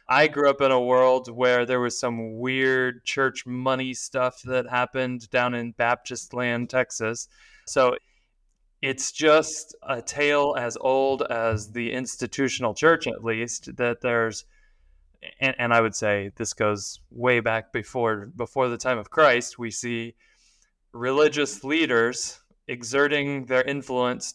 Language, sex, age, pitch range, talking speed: English, male, 20-39, 115-140 Hz, 145 wpm